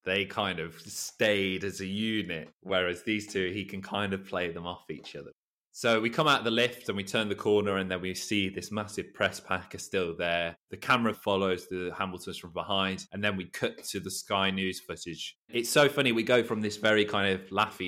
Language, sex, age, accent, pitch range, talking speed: English, male, 20-39, British, 90-105 Hz, 230 wpm